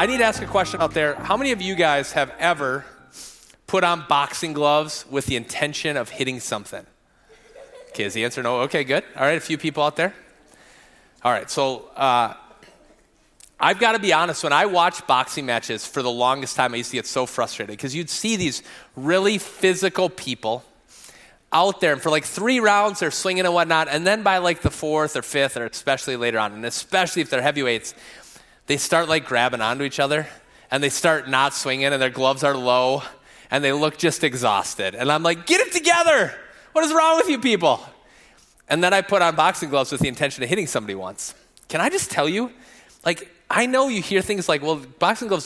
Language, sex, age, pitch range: English, male, 30-49, 140-195 Hz